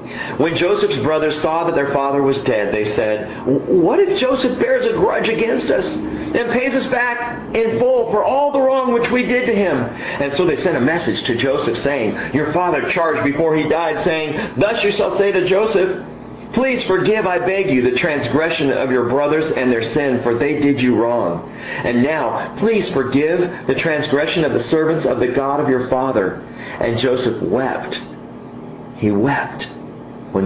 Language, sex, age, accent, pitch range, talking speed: English, male, 50-69, American, 125-200 Hz, 185 wpm